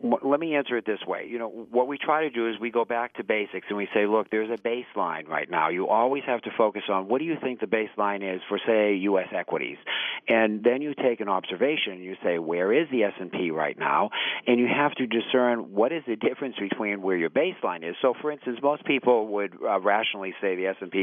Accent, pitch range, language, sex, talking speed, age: American, 95-120 Hz, English, male, 240 wpm, 50-69